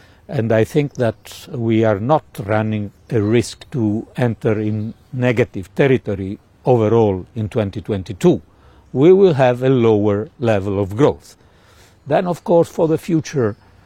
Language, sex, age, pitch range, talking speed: English, male, 60-79, 100-140 Hz, 140 wpm